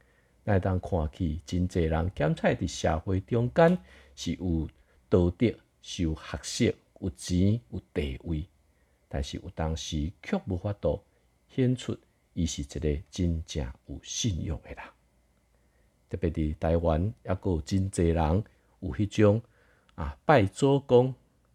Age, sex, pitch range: 50-69, male, 80-105 Hz